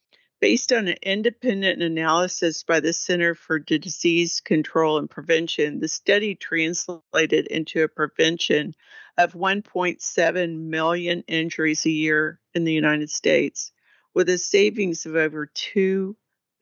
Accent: American